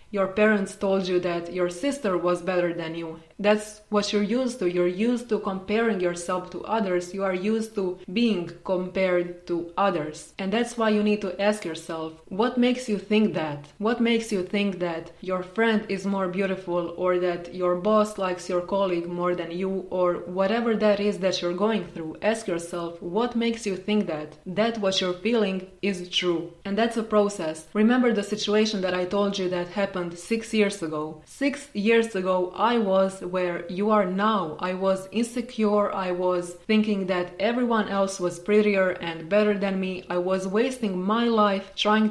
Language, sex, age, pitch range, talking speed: English, female, 20-39, 180-215 Hz, 185 wpm